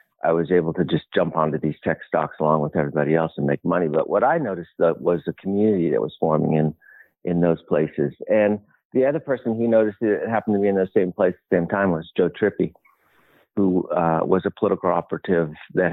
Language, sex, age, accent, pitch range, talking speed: English, male, 50-69, American, 80-100 Hz, 230 wpm